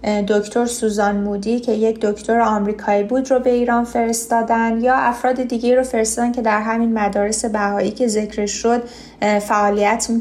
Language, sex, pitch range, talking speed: Persian, female, 205-235 Hz, 160 wpm